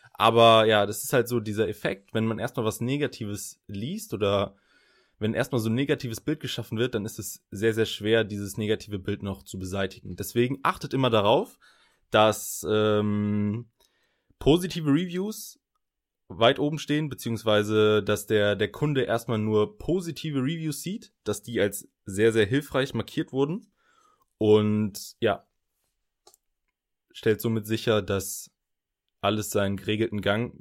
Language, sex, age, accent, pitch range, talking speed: German, male, 20-39, German, 105-130 Hz, 145 wpm